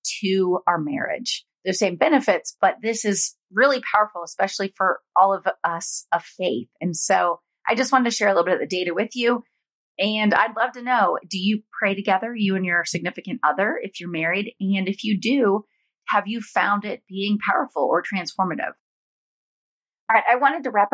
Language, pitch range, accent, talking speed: English, 165-210 Hz, American, 195 wpm